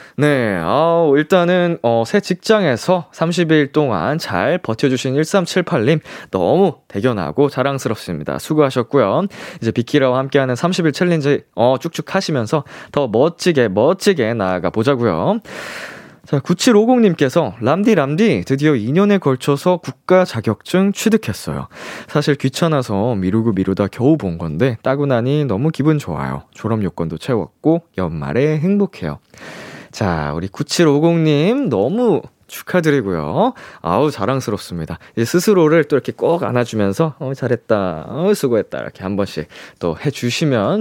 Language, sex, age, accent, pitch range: Korean, male, 20-39, native, 115-170 Hz